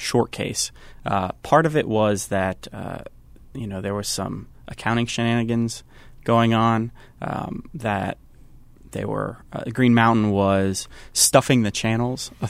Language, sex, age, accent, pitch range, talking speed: English, male, 20-39, American, 105-125 Hz, 140 wpm